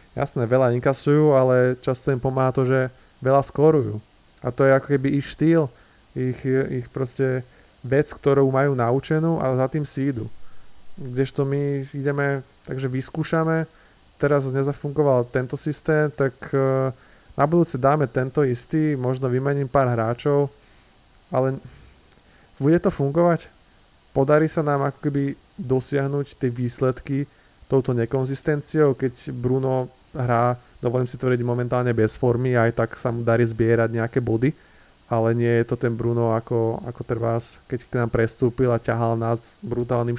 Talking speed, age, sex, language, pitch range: 140 wpm, 20-39, male, Slovak, 120-140 Hz